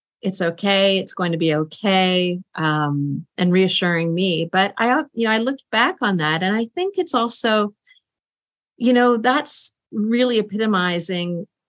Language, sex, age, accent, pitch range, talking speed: English, female, 50-69, American, 175-220 Hz, 155 wpm